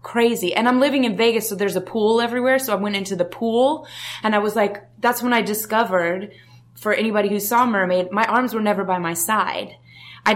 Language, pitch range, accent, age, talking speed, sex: English, 180-230 Hz, American, 20-39, 220 wpm, female